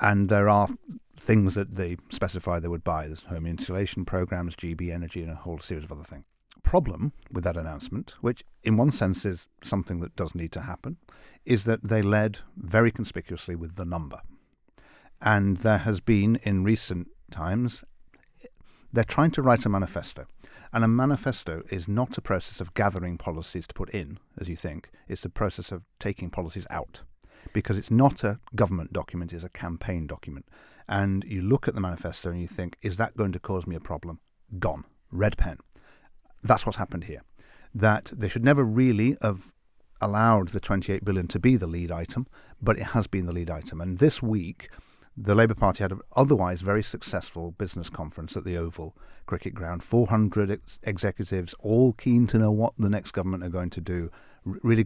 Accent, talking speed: British, 190 wpm